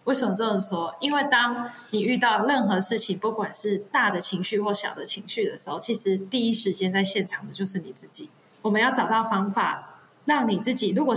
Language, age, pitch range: Chinese, 20-39, 190-230 Hz